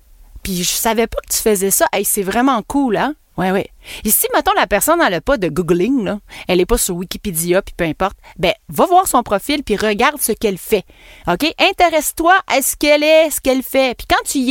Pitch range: 195-270 Hz